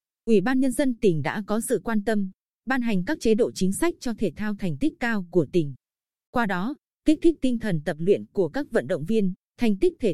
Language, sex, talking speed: Vietnamese, female, 245 wpm